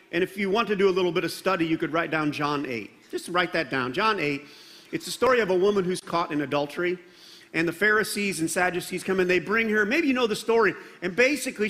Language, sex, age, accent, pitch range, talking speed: English, male, 50-69, American, 175-290 Hz, 255 wpm